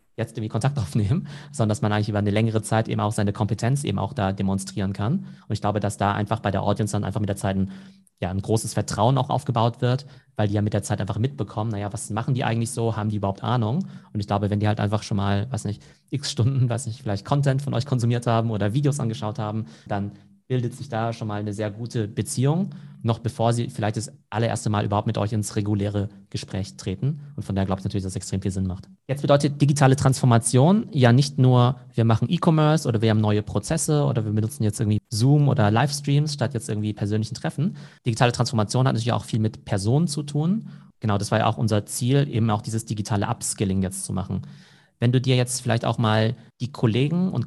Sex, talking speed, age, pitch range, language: male, 235 wpm, 30-49, 105-135 Hz, German